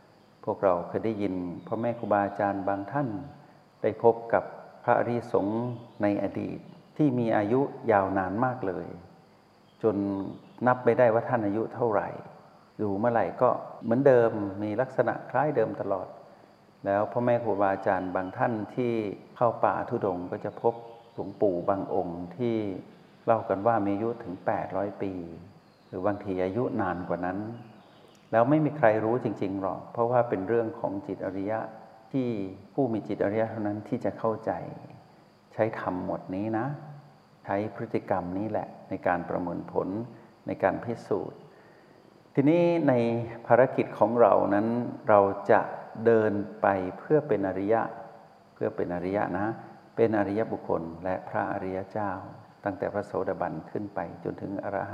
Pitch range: 100-115 Hz